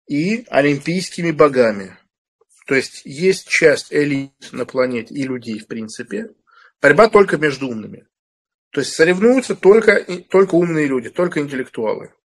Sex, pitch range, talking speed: male, 125-170 Hz, 135 wpm